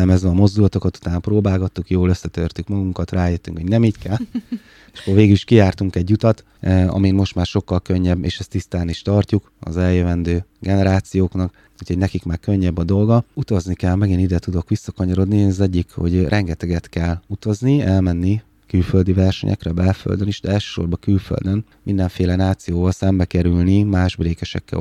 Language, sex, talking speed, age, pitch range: Hungarian, male, 160 wpm, 20-39, 90-100 Hz